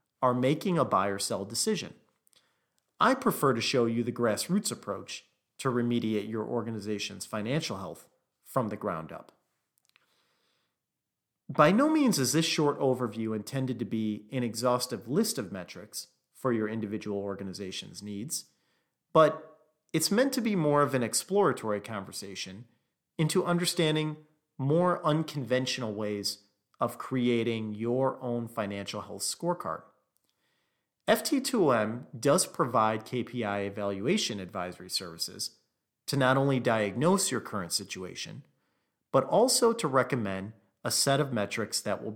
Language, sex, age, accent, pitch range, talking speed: English, male, 40-59, American, 105-155 Hz, 130 wpm